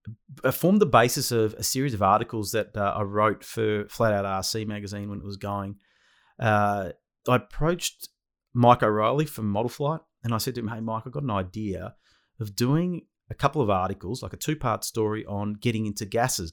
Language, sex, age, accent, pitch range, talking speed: English, male, 30-49, Australian, 100-120 Hz, 200 wpm